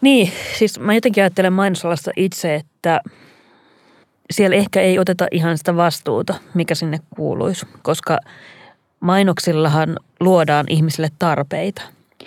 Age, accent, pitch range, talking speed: 30-49, native, 150-185 Hz, 110 wpm